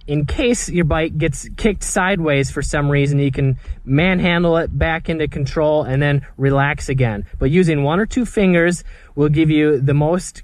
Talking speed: 185 wpm